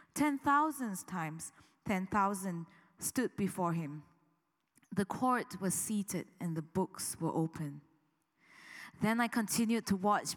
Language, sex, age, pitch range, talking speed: English, female, 20-39, 165-215 Hz, 125 wpm